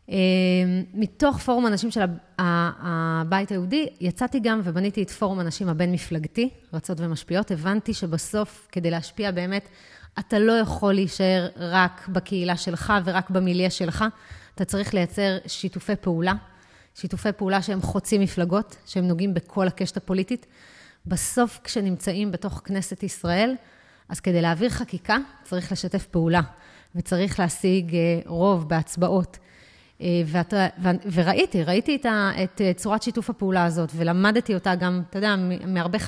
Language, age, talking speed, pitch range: Hebrew, 30-49, 125 wpm, 180-215 Hz